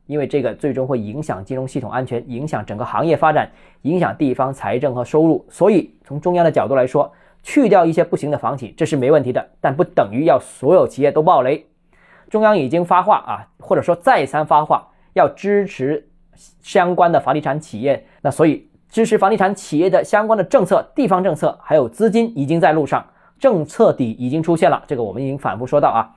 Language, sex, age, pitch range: Chinese, male, 20-39, 135-190 Hz